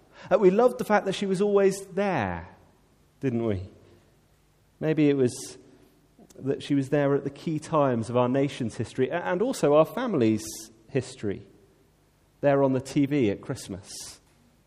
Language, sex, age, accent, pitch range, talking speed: English, male, 30-49, British, 105-140 Hz, 150 wpm